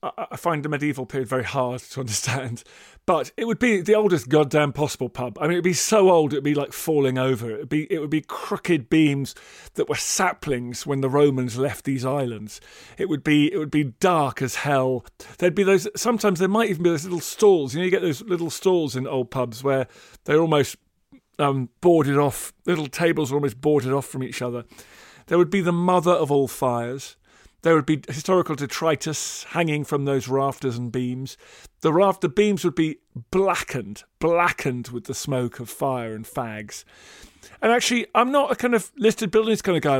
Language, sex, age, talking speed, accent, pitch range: English, male, 40-59, 205 wpm, British, 135-180 Hz